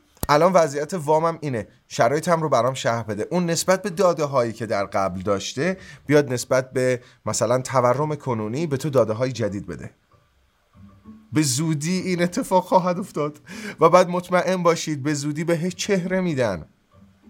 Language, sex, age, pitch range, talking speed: Persian, male, 30-49, 115-160 Hz, 165 wpm